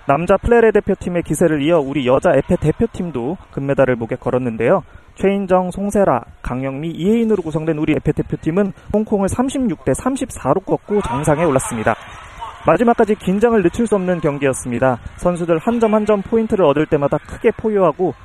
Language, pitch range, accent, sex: Korean, 140-215 Hz, native, male